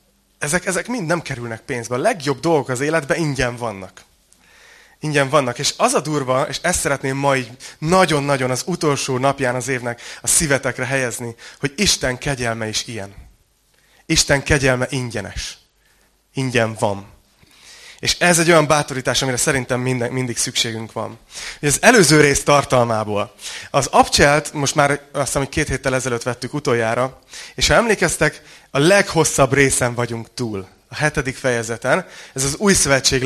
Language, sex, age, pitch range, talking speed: Hungarian, male, 30-49, 120-150 Hz, 150 wpm